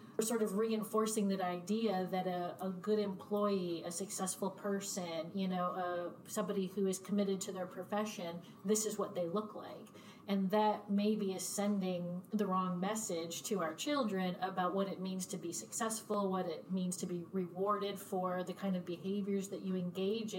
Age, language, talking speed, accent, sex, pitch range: 30-49, English, 180 wpm, American, female, 180-205 Hz